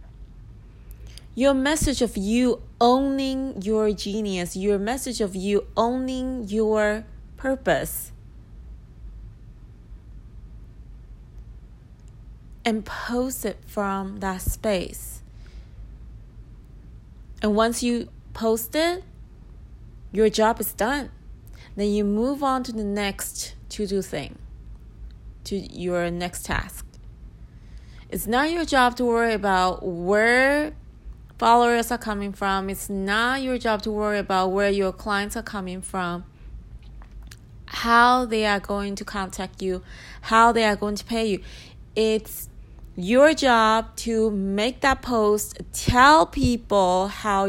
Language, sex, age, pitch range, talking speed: English, female, 30-49, 195-240 Hz, 115 wpm